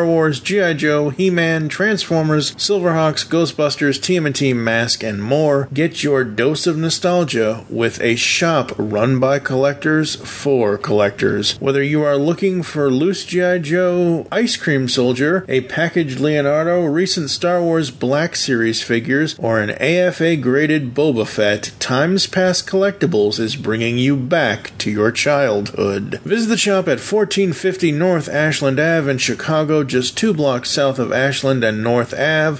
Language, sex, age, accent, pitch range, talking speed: English, male, 40-59, American, 125-170 Hz, 145 wpm